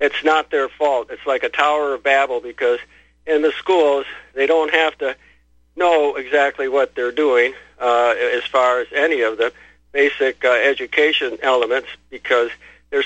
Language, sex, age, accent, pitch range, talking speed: English, male, 50-69, American, 130-190 Hz, 165 wpm